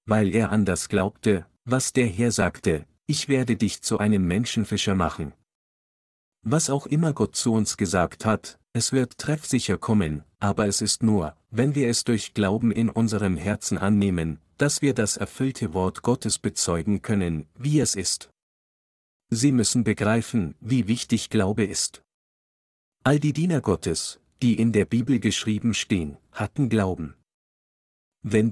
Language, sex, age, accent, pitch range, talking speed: German, male, 50-69, German, 95-120 Hz, 150 wpm